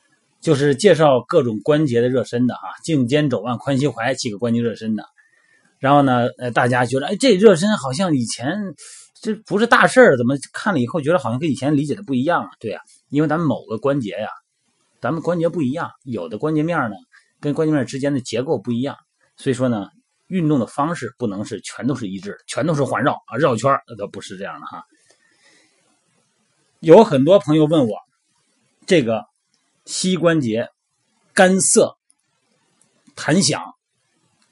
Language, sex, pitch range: Chinese, male, 125-175 Hz